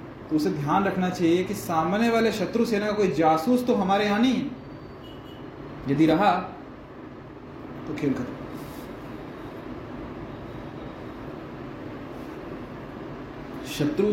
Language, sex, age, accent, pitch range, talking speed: Hindi, male, 20-39, native, 160-225 Hz, 95 wpm